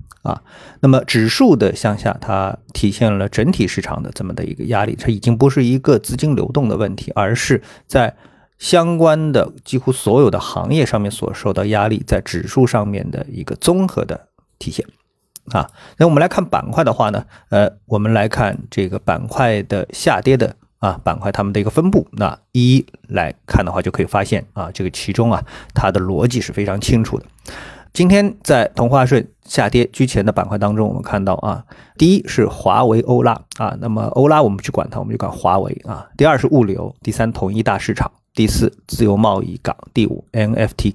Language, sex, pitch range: Chinese, male, 105-130 Hz